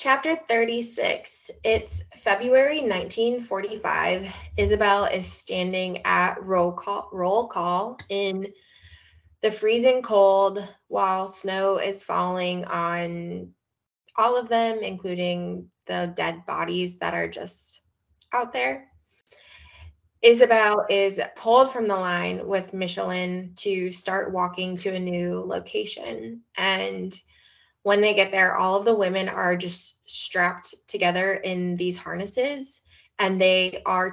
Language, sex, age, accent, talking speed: English, female, 20-39, American, 120 wpm